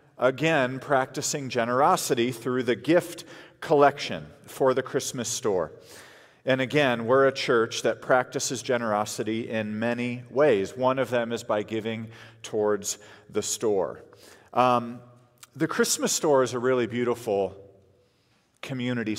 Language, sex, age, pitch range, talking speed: English, male, 40-59, 120-160 Hz, 125 wpm